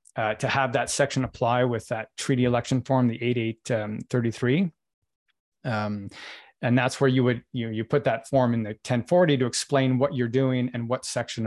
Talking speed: 215 wpm